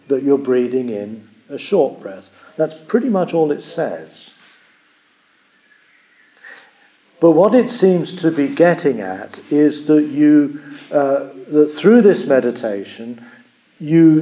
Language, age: English, 50-69